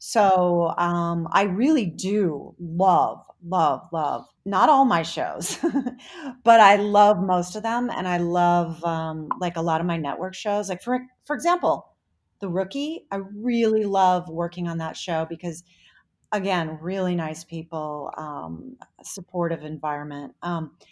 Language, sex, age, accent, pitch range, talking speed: English, female, 40-59, American, 175-220 Hz, 145 wpm